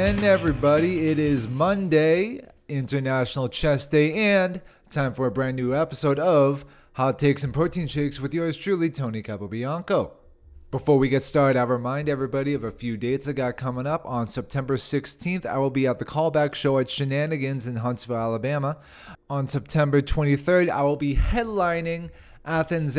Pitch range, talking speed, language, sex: 120-150 Hz, 165 wpm, English, male